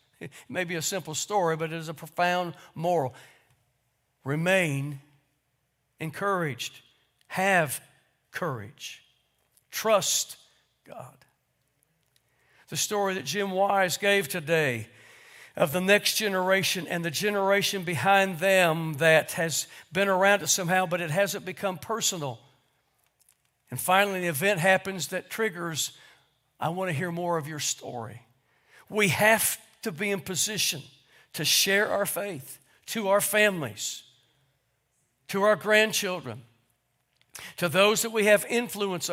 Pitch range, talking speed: 140-195 Hz, 125 wpm